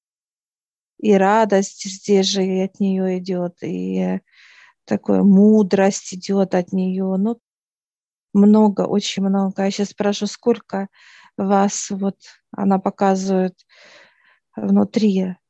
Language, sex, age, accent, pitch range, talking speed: Russian, female, 40-59, native, 190-205 Hz, 105 wpm